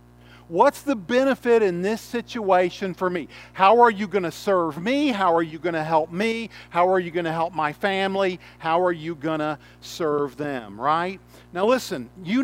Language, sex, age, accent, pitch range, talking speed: English, male, 50-69, American, 165-220 Hz, 200 wpm